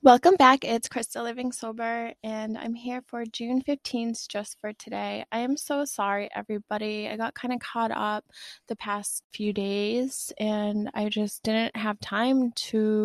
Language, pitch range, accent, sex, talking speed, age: English, 210-240 Hz, American, female, 170 wpm, 20-39